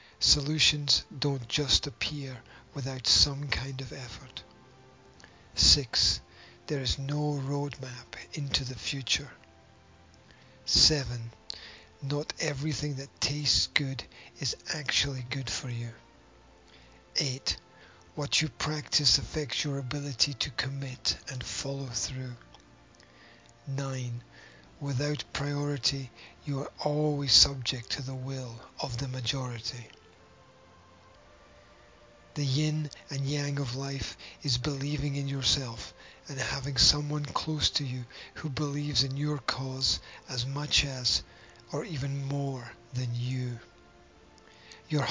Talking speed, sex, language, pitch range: 110 wpm, male, English, 120-145 Hz